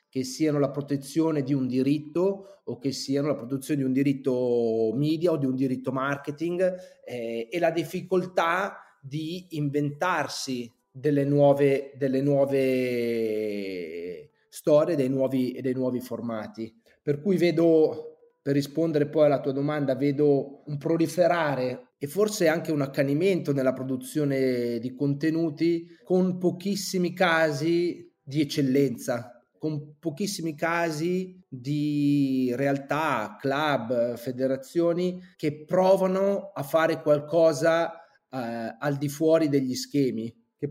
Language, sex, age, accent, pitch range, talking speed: Italian, male, 30-49, native, 135-170 Hz, 120 wpm